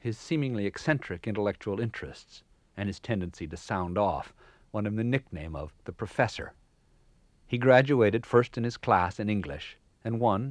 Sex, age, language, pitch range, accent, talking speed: male, 50-69, English, 90-115 Hz, American, 160 wpm